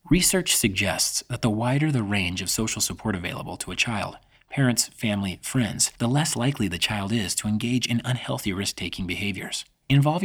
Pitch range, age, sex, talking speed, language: 100-135 Hz, 30-49, male, 180 wpm, English